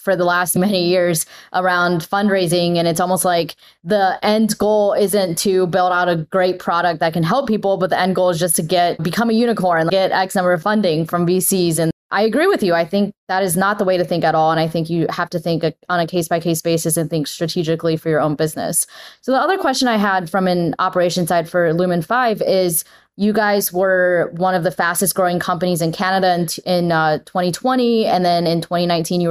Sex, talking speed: female, 230 wpm